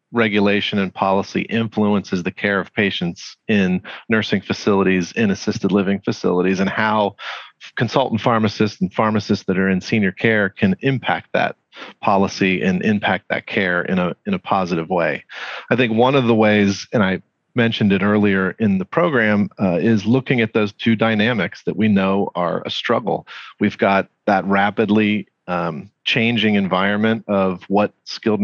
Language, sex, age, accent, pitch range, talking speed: English, male, 40-59, American, 95-115 Hz, 160 wpm